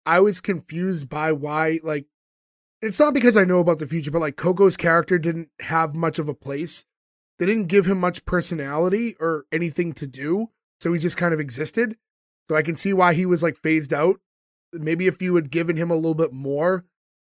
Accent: American